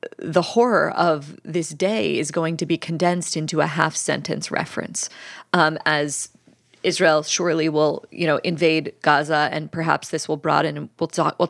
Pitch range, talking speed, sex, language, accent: 165-205 Hz, 165 wpm, female, English, American